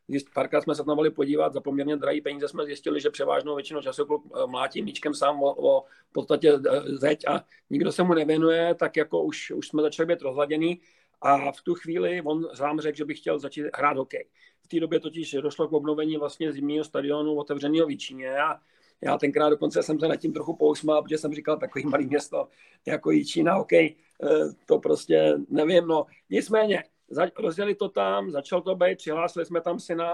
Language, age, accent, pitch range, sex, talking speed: Czech, 40-59, native, 145-170 Hz, male, 195 wpm